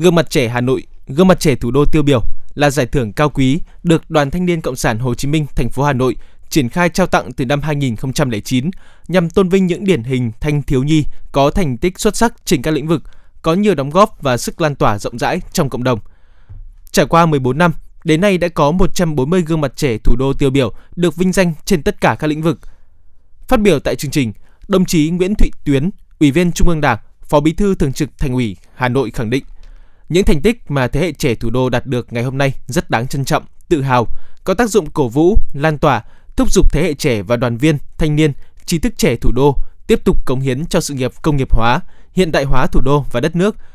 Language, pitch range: Vietnamese, 125-175 Hz